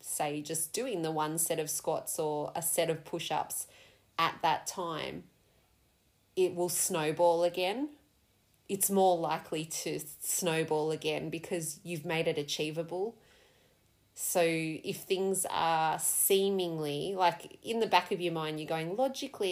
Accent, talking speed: Australian, 145 wpm